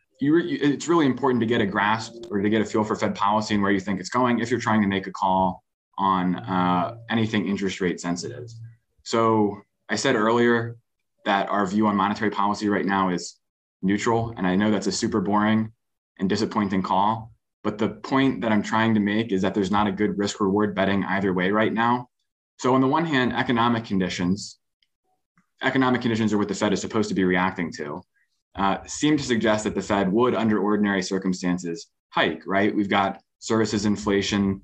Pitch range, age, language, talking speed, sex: 95-115 Hz, 20-39, English, 195 wpm, male